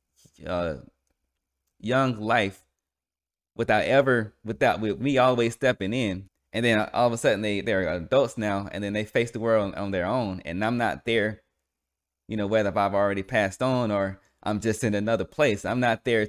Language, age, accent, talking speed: English, 20-39, American, 185 wpm